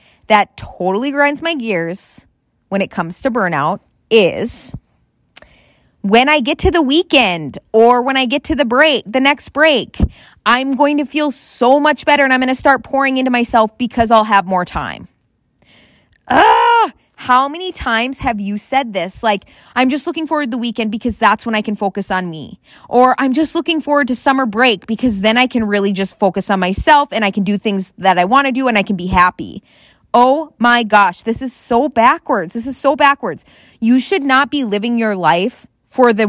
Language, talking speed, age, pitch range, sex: English, 205 wpm, 20-39, 215-280 Hz, female